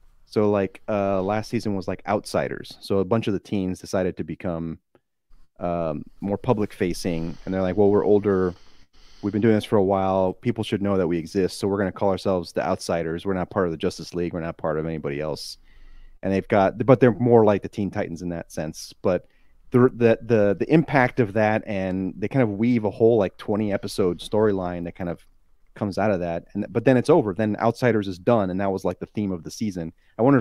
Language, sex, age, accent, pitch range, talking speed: English, male, 30-49, American, 90-110 Hz, 235 wpm